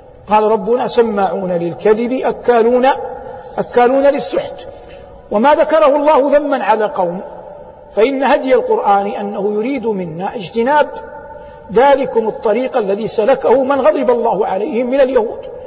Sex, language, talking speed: male, Arabic, 110 wpm